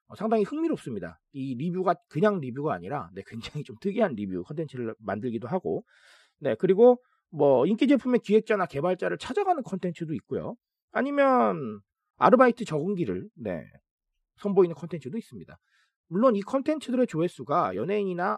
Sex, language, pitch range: male, Korean, 150-215 Hz